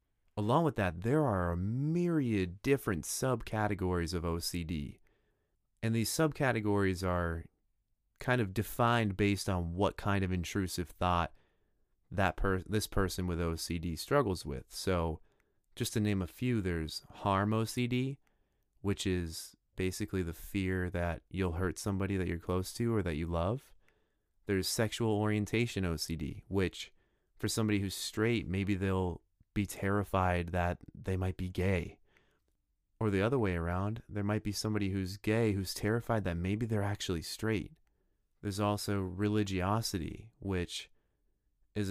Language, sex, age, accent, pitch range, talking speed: English, male, 30-49, American, 90-105 Hz, 140 wpm